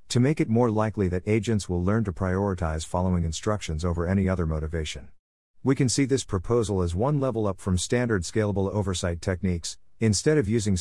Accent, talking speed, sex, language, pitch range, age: American, 190 wpm, male, English, 90-115 Hz, 50-69